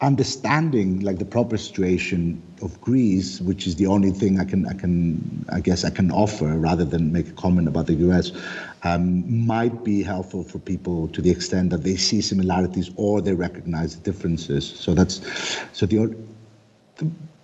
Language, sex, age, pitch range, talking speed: English, male, 50-69, 85-105 Hz, 180 wpm